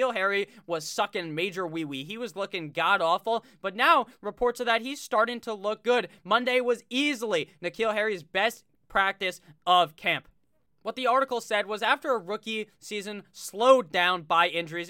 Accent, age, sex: American, 20-39, male